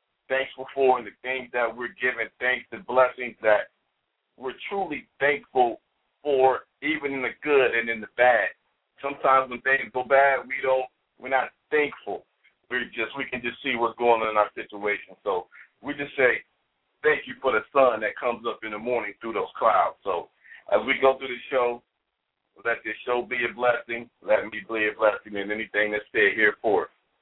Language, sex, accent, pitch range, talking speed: English, male, American, 110-130 Hz, 195 wpm